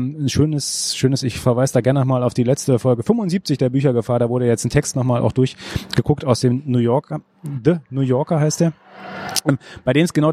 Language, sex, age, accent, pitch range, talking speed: German, male, 30-49, German, 110-135 Hz, 210 wpm